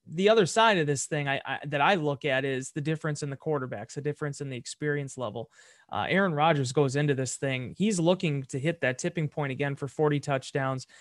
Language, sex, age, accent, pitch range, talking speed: English, male, 30-49, American, 145-180 Hz, 230 wpm